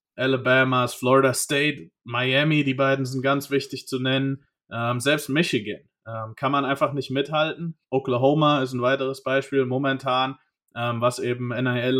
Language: German